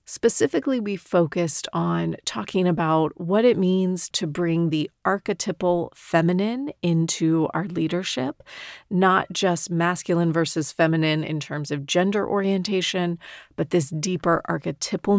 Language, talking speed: English, 125 wpm